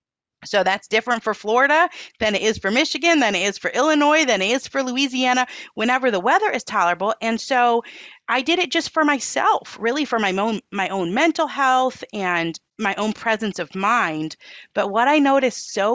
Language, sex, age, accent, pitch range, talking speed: English, female, 40-59, American, 200-285 Hz, 195 wpm